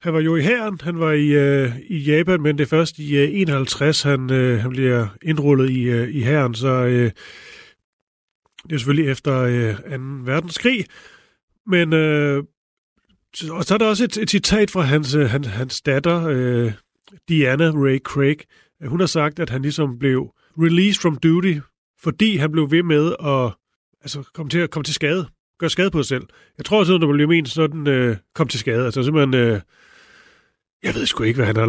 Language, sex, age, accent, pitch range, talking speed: Danish, male, 30-49, native, 130-165 Hz, 195 wpm